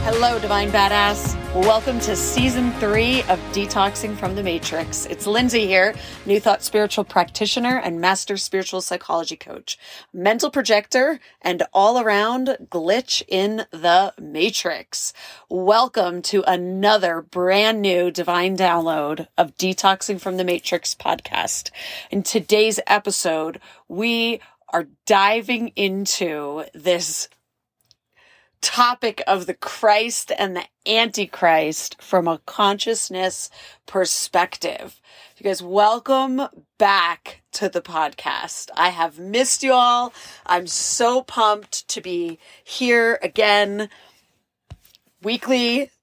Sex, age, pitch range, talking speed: female, 30-49, 180-225 Hz, 110 wpm